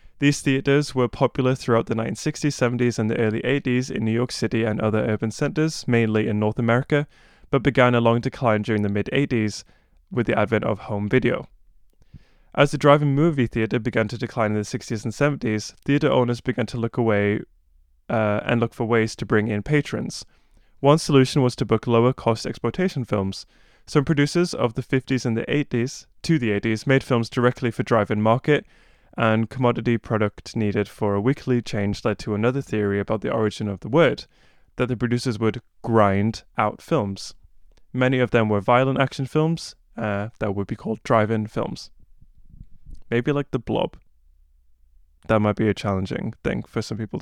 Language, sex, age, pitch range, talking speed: English, male, 20-39, 105-130 Hz, 185 wpm